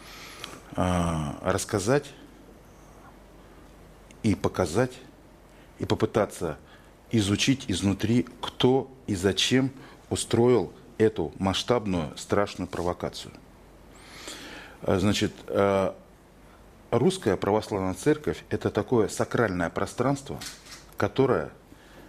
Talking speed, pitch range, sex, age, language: 65 wpm, 90-115 Hz, male, 40-59, Russian